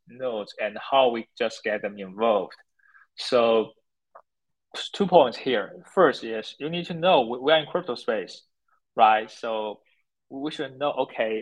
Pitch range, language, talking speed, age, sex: 115-150 Hz, English, 150 wpm, 20-39, male